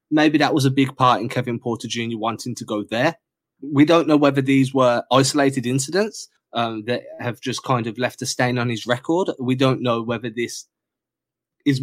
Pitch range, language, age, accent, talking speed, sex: 120-145 Hz, English, 20-39, British, 205 wpm, male